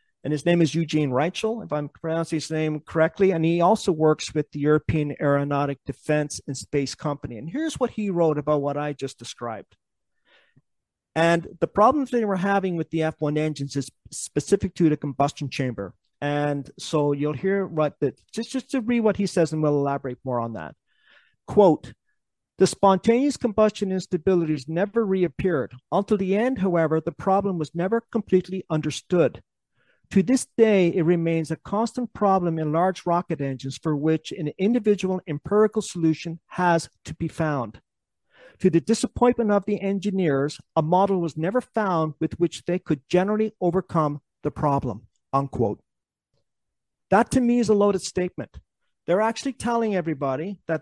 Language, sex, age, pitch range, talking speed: English, male, 40-59, 150-195 Hz, 165 wpm